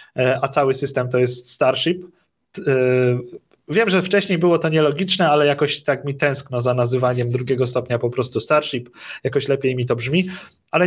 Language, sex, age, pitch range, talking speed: Polish, male, 30-49, 130-160 Hz, 165 wpm